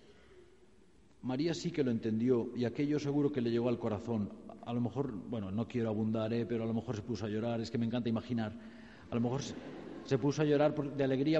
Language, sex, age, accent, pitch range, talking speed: Spanish, male, 50-69, Spanish, 110-145 Hz, 225 wpm